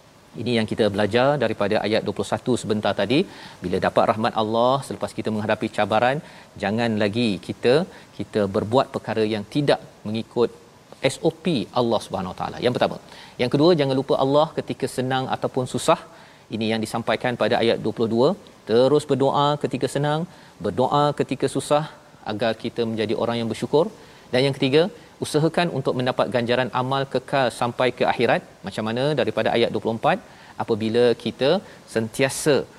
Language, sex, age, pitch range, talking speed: Malayalam, male, 40-59, 110-140 Hz, 145 wpm